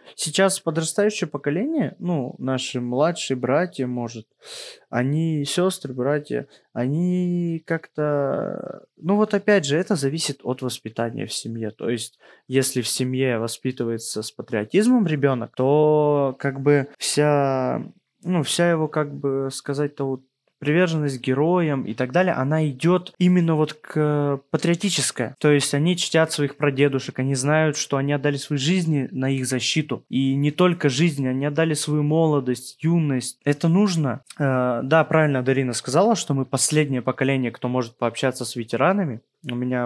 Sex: male